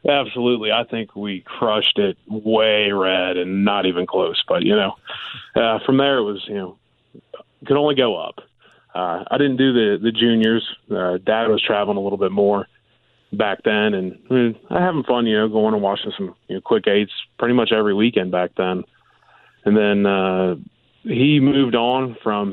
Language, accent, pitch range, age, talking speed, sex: English, American, 100-120 Hz, 30-49, 190 wpm, male